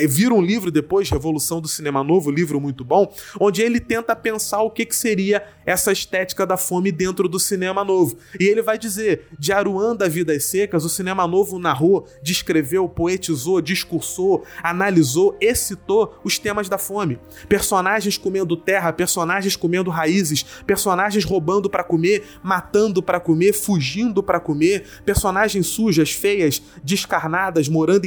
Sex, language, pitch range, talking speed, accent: male, Portuguese, 170-215 Hz, 150 wpm, Brazilian